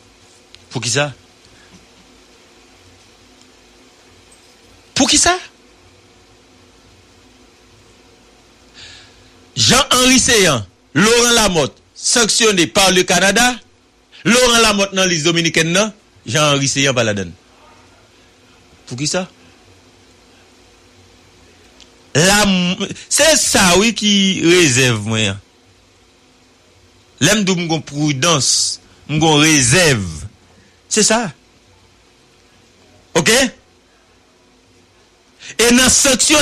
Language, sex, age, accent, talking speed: English, male, 60-79, French, 70 wpm